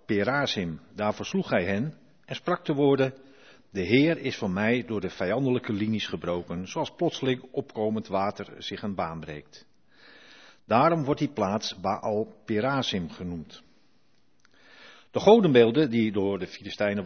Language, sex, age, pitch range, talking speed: Dutch, male, 50-69, 100-140 Hz, 140 wpm